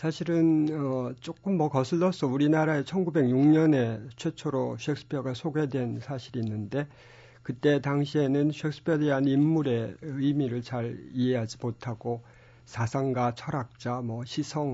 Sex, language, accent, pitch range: male, Korean, native, 120-145 Hz